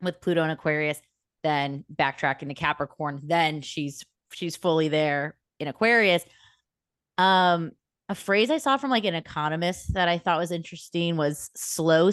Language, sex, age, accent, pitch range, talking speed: English, female, 20-39, American, 160-200 Hz, 155 wpm